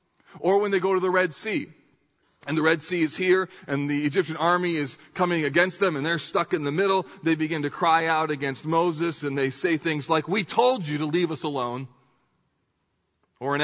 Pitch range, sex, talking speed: 140-180 Hz, male, 215 wpm